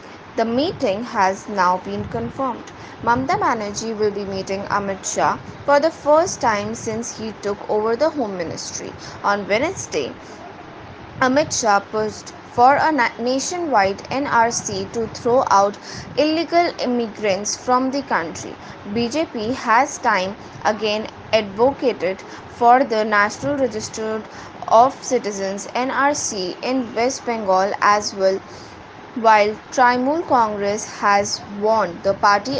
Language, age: English, 20-39